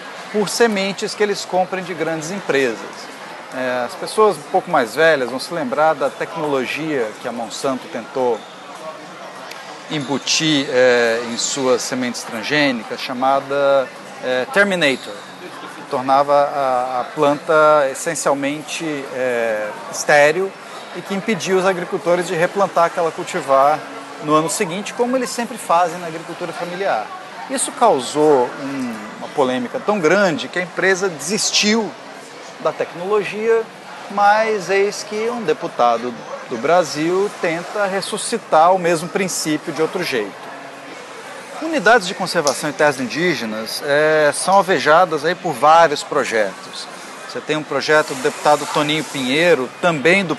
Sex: male